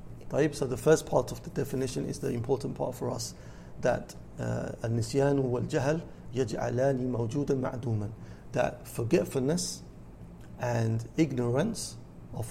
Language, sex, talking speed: English, male, 95 wpm